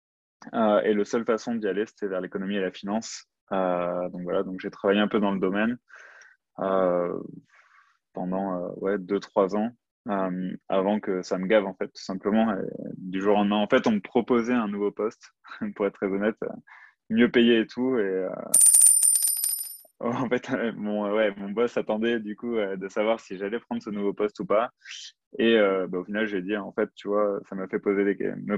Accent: French